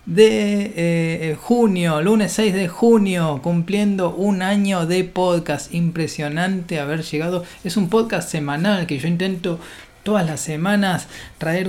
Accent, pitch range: Argentinian, 150-190 Hz